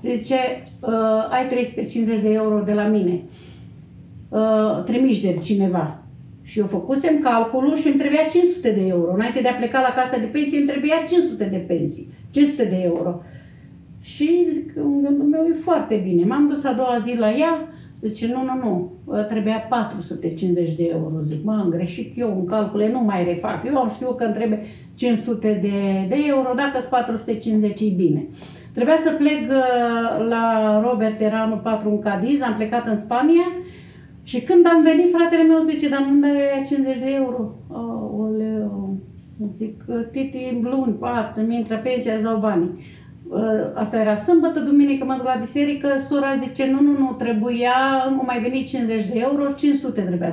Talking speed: 180 wpm